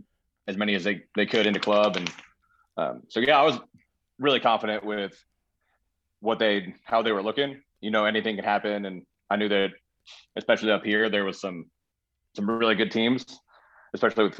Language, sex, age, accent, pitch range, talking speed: English, male, 30-49, American, 95-105 Hz, 190 wpm